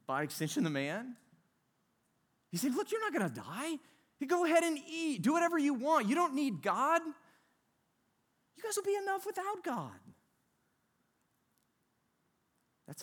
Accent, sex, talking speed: American, male, 145 wpm